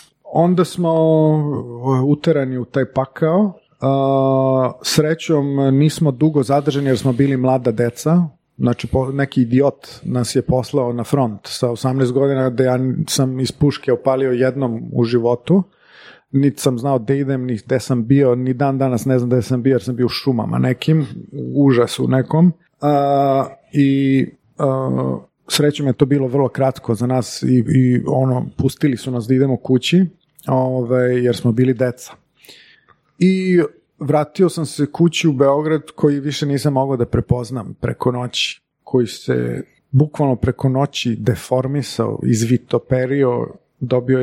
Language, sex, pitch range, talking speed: Croatian, male, 125-145 Hz, 145 wpm